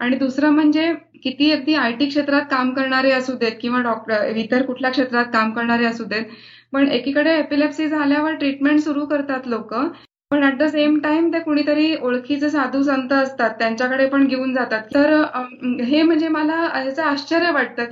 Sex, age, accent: female, 20-39, native